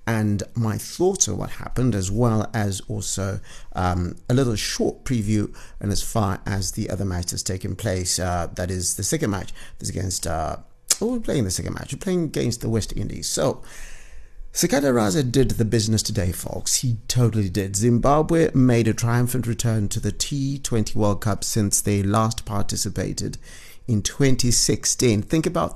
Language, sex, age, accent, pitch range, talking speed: English, male, 50-69, British, 100-135 Hz, 175 wpm